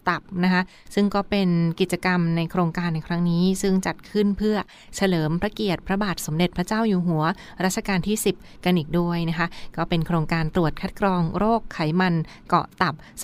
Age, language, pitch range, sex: 20-39, Thai, 165-200 Hz, female